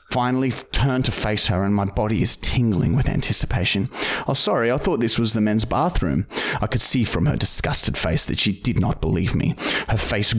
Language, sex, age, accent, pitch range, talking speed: English, male, 30-49, Australian, 100-130 Hz, 210 wpm